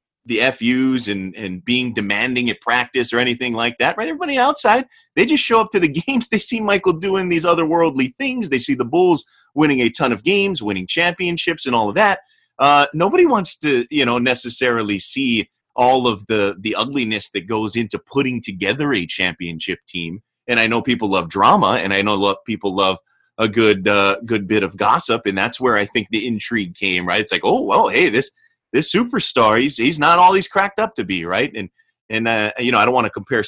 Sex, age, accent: male, 30-49, American